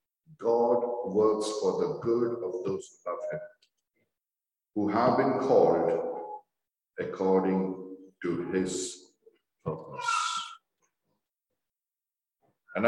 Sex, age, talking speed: male, 60-79, 90 wpm